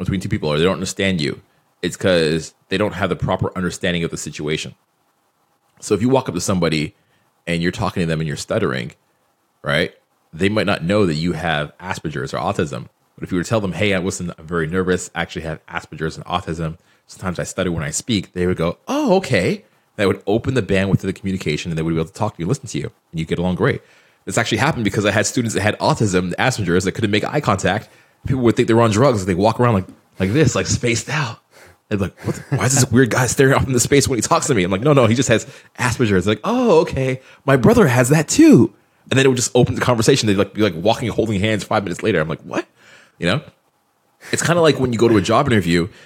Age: 30-49